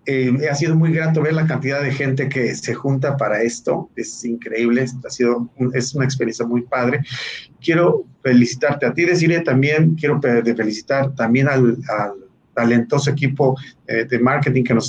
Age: 40-59